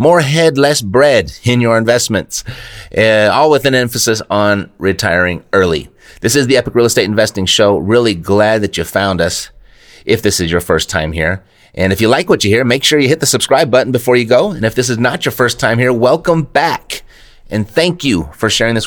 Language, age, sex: English, 30-49, male